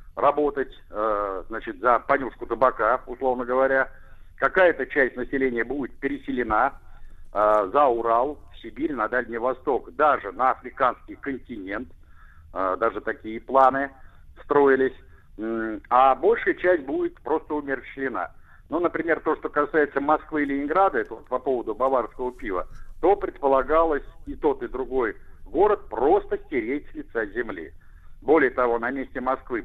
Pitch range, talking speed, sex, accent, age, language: 115-180 Hz, 130 wpm, male, native, 60-79, Russian